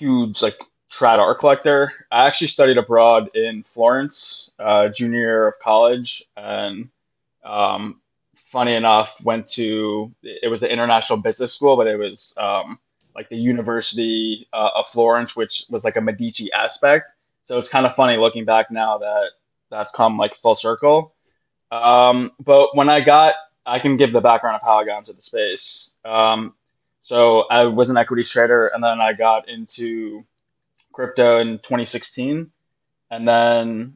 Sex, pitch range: male, 110-130 Hz